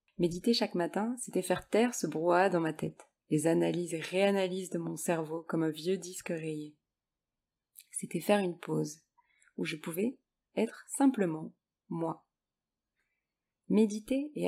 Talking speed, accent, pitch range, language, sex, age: 145 wpm, French, 160-205 Hz, French, female, 20-39